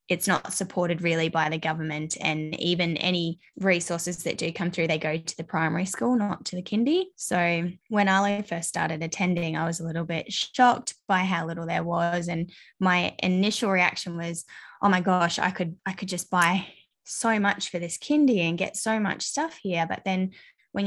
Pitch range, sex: 165-190 Hz, female